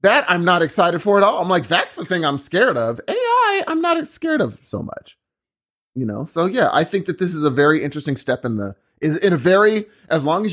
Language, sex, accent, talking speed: English, male, American, 245 wpm